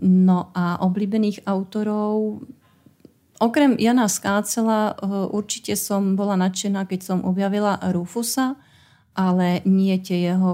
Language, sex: Slovak, female